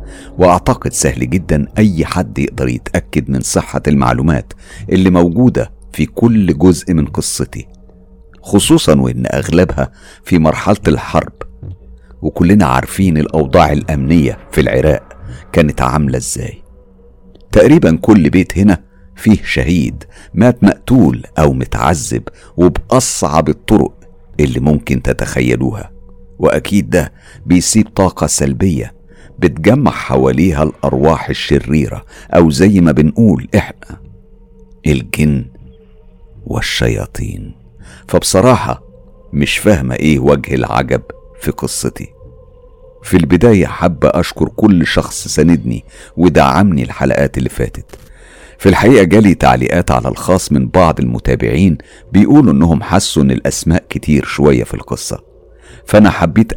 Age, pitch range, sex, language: 50-69, 70-95 Hz, male, Arabic